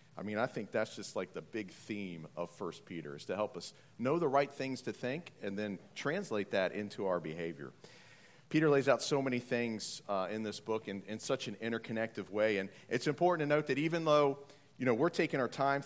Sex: male